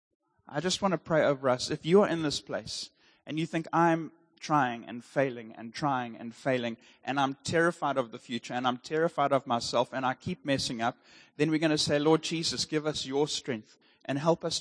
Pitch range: 125-155 Hz